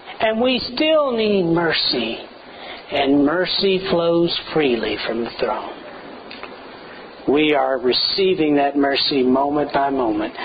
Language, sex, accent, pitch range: English, male, American, 170-245 Hz